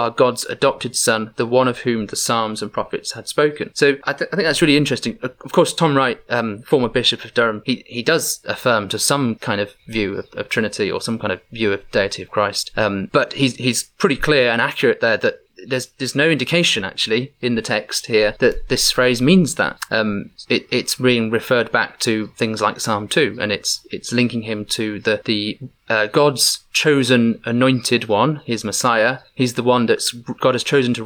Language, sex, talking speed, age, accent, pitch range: English, male, 210 wpm, 30-49, British, 115-145 Hz